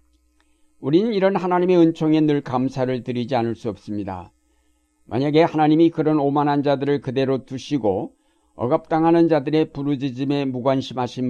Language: Korean